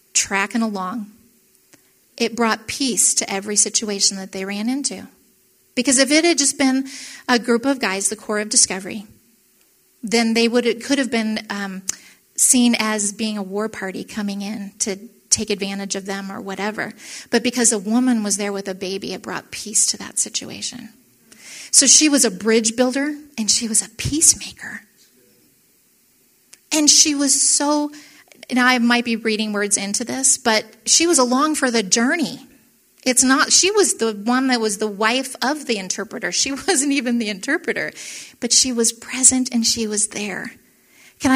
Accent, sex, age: American, female, 30-49